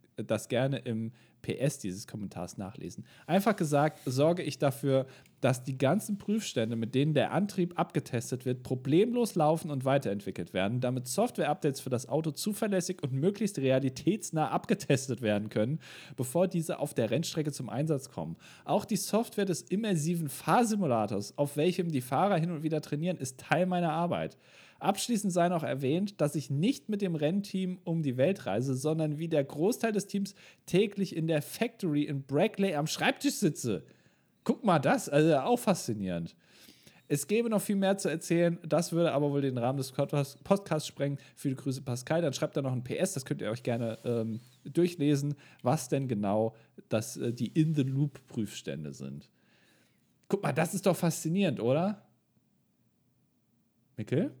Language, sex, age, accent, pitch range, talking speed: German, male, 40-59, German, 130-180 Hz, 165 wpm